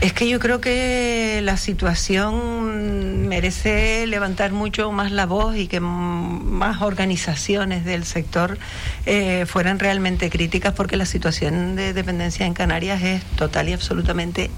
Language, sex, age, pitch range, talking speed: Spanish, female, 50-69, 145-195 Hz, 140 wpm